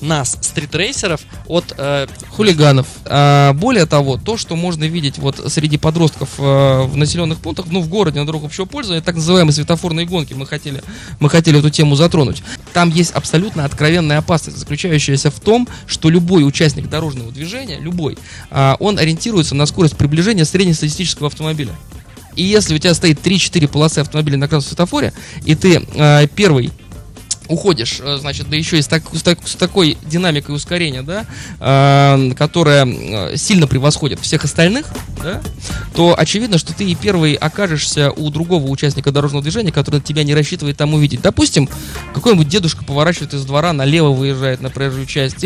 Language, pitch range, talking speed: Russian, 140-170 Hz, 160 wpm